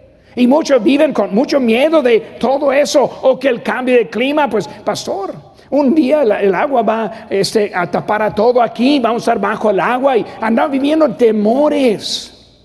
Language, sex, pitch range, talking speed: Spanish, male, 195-260 Hz, 175 wpm